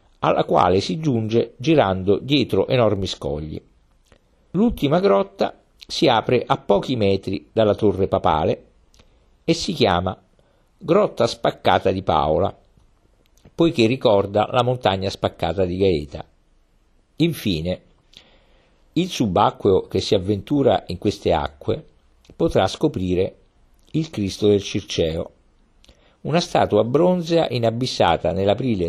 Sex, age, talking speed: male, 50-69, 110 wpm